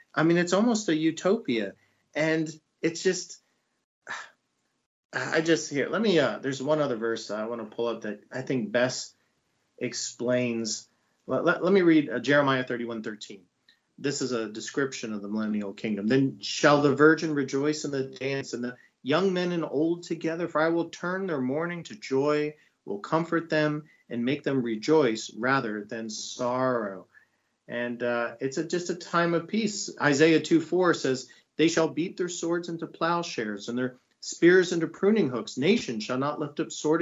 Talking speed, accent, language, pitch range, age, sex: 180 wpm, American, English, 120-165 Hz, 40-59, male